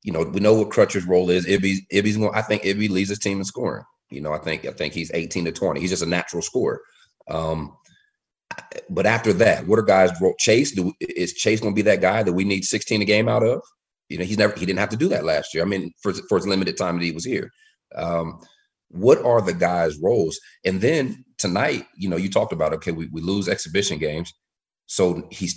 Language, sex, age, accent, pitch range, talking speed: English, male, 30-49, American, 90-105 Hz, 260 wpm